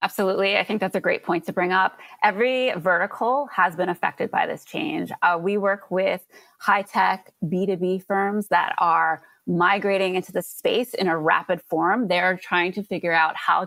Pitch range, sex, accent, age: 170-205 Hz, female, American, 20-39